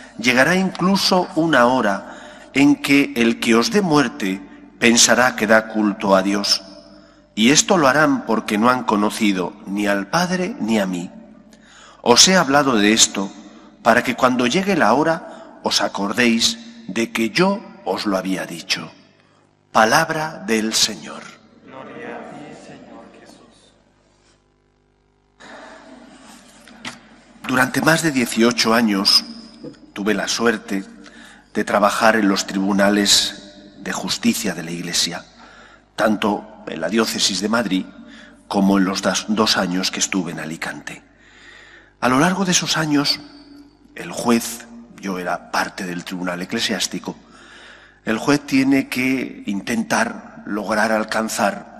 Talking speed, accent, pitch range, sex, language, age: 125 wpm, Spanish, 100-150 Hz, male, English, 40-59